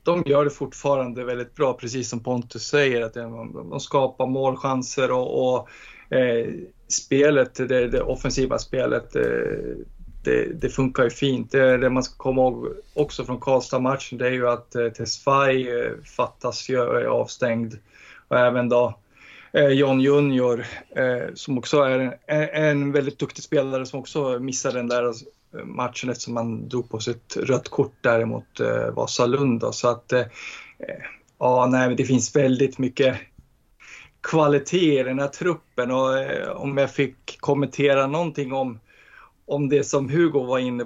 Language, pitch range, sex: Swedish, 125-145 Hz, male